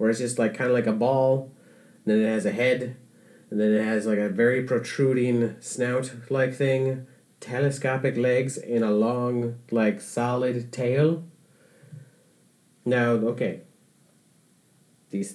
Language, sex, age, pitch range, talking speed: English, male, 30-49, 115-155 Hz, 140 wpm